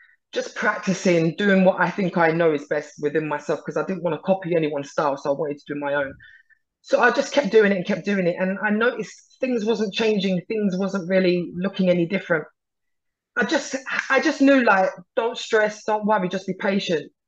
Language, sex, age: English, female, 20-39